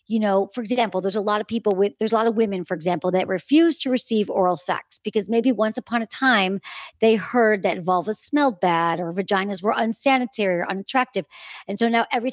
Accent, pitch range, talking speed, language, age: American, 185-230 Hz, 220 wpm, English, 40-59